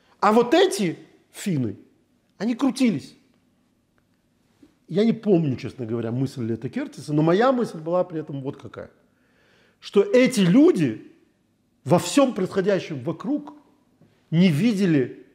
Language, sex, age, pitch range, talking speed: Russian, male, 40-59, 135-215 Hz, 120 wpm